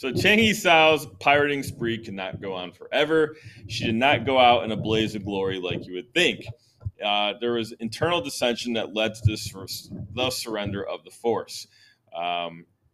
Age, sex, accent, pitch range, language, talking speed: 30-49, male, American, 100-130 Hz, English, 175 wpm